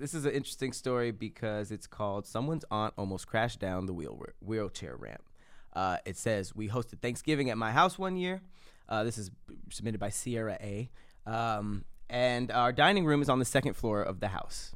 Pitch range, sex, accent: 105-140 Hz, male, American